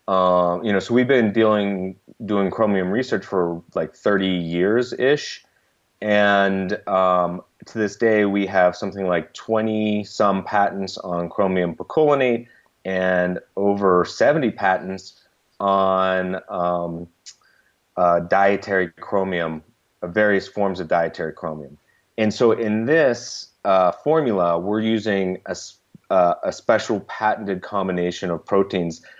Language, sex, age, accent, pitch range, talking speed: English, male, 30-49, American, 90-105 Hz, 125 wpm